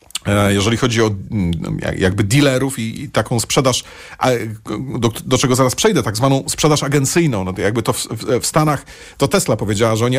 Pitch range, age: 105-140 Hz, 40-59